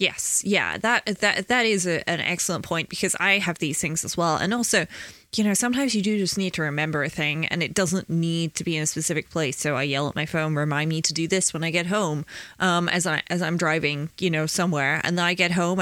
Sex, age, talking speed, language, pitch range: female, 20-39, 260 wpm, English, 155-200 Hz